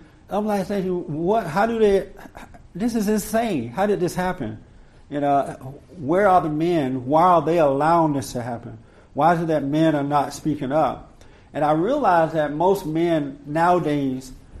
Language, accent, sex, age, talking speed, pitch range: English, American, male, 50-69, 175 wpm, 135-160 Hz